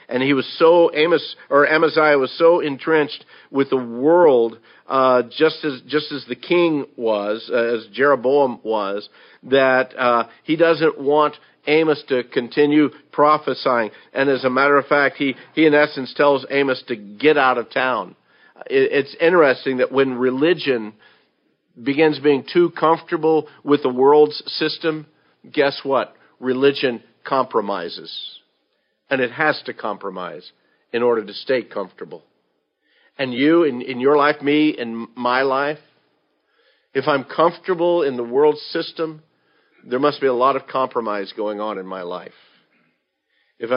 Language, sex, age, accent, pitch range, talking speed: English, male, 50-69, American, 125-155 Hz, 150 wpm